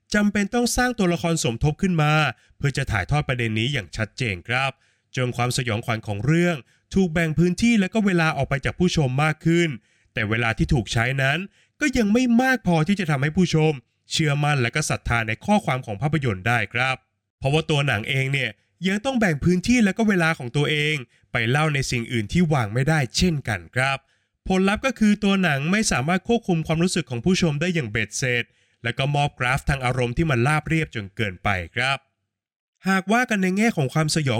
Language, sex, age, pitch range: Thai, male, 20-39, 120-170 Hz